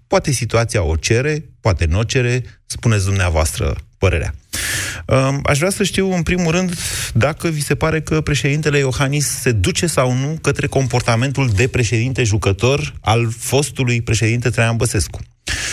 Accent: native